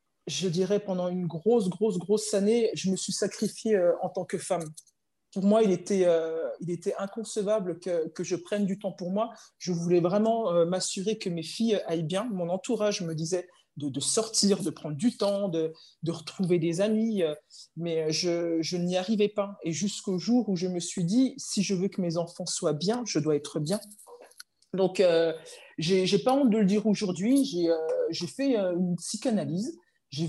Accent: French